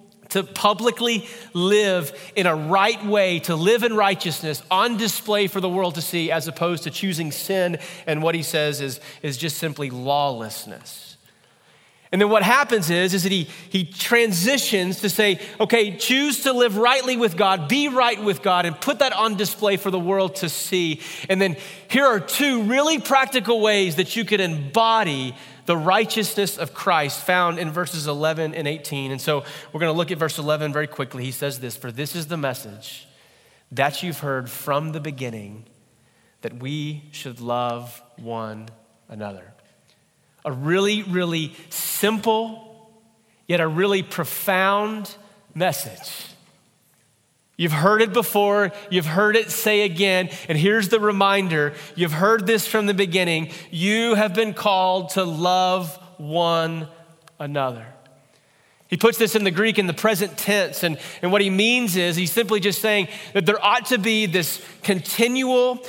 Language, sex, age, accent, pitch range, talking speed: English, male, 30-49, American, 160-215 Hz, 165 wpm